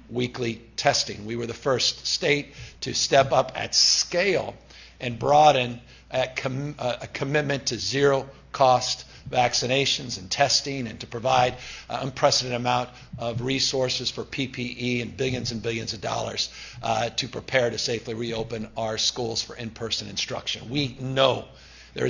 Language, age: English, 50-69